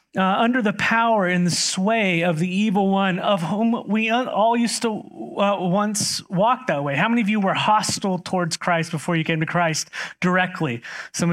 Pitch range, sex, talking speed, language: 170-215 Hz, male, 195 wpm, English